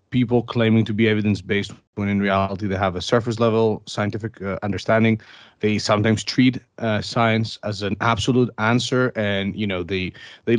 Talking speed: 165 wpm